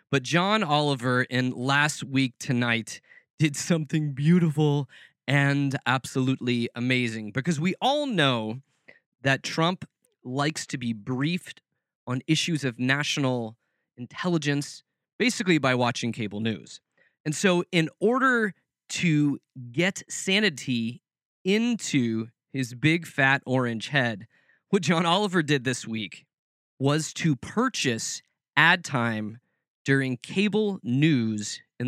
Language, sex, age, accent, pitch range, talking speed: English, male, 20-39, American, 120-165 Hz, 115 wpm